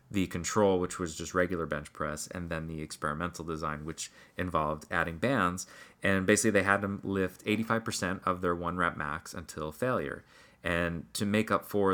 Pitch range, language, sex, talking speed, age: 85-100 Hz, English, male, 185 wpm, 30-49